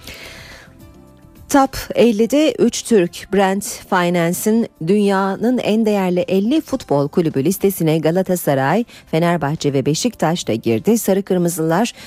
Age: 40-59